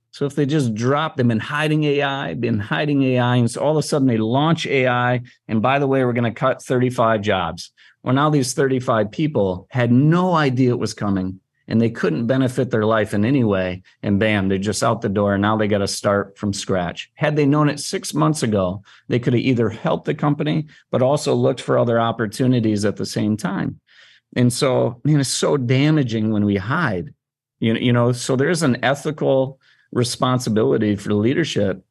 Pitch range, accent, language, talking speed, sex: 110-135 Hz, American, English, 215 wpm, male